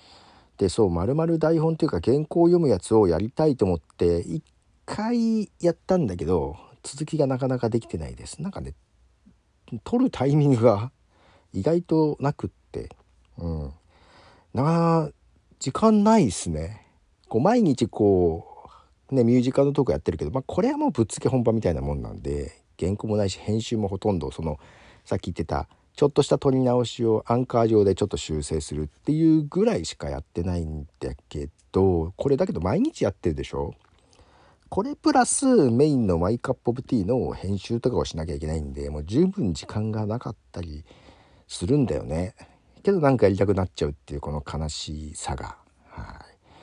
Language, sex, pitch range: Japanese, male, 85-140 Hz